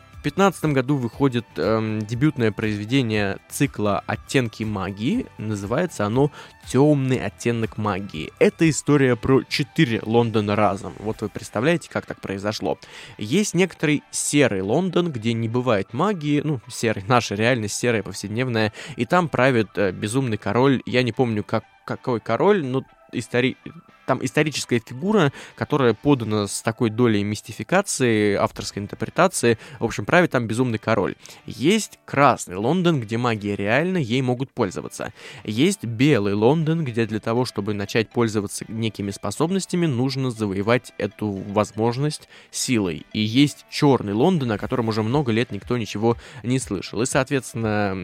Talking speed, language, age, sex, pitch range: 140 wpm, Russian, 20-39, male, 105-140 Hz